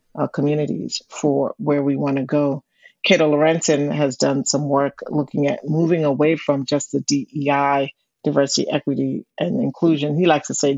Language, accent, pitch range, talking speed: English, American, 140-150 Hz, 165 wpm